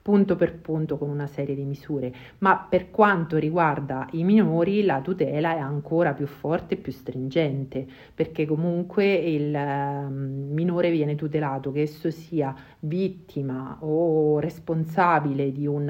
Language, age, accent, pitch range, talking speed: Italian, 50-69, native, 140-165 Hz, 140 wpm